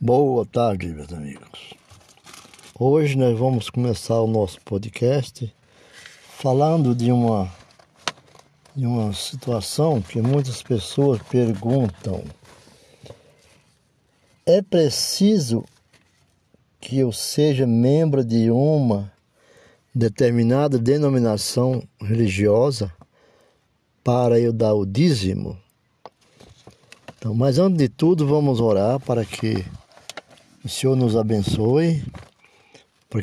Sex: male